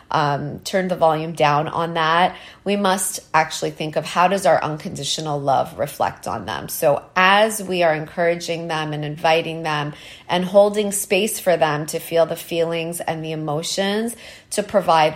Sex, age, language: female, 30-49, English